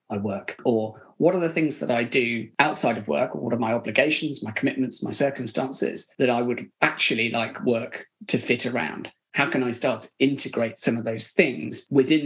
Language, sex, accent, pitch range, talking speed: English, male, British, 120-165 Hz, 200 wpm